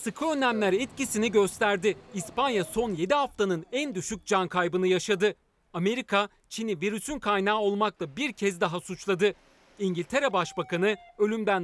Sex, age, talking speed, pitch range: male, 40-59, 130 wpm, 180-220 Hz